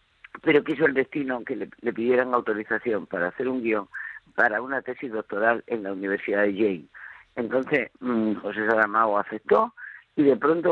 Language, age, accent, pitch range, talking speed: Spanish, 50-69, Spanish, 115-145 Hz, 160 wpm